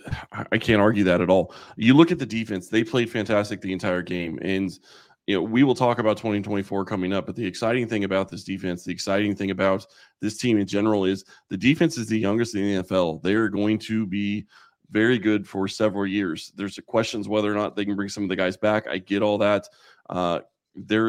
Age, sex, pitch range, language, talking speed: 20-39, male, 95-110 Hz, English, 230 wpm